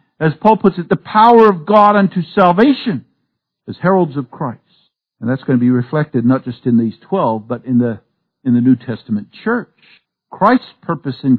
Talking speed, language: 190 wpm, English